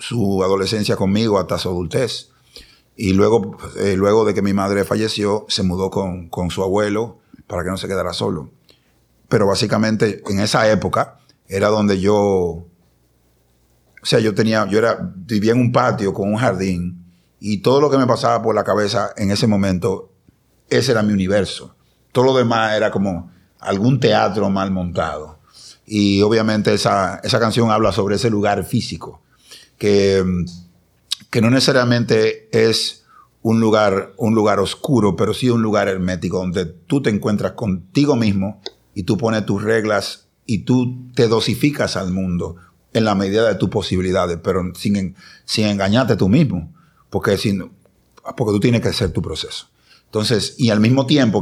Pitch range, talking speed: 95-115 Hz, 165 wpm